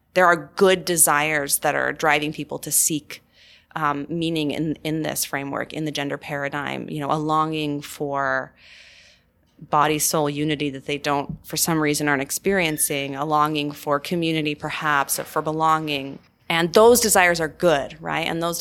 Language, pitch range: English, 145-160 Hz